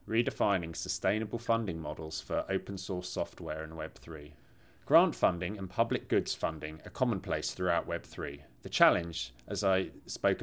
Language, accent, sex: English, British, male